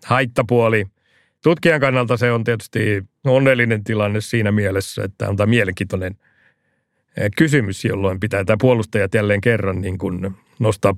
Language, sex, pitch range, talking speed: Finnish, male, 95-115 Hz, 125 wpm